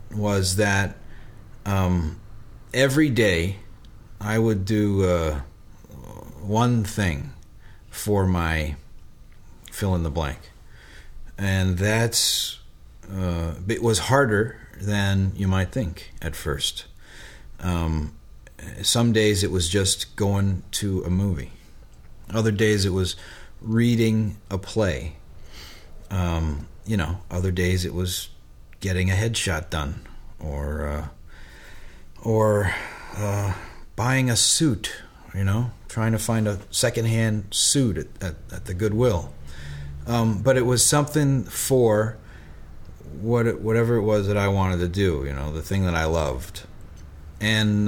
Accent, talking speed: American, 125 wpm